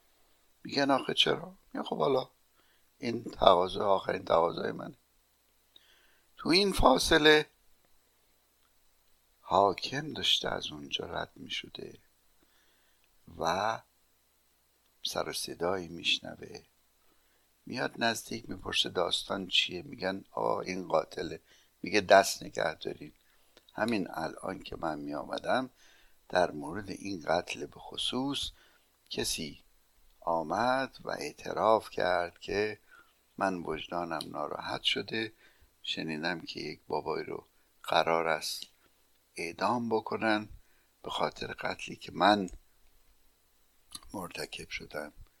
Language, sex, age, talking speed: Persian, male, 60-79, 100 wpm